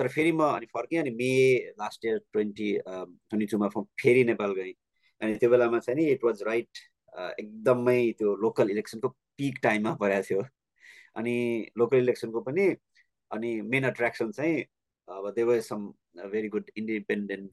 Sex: male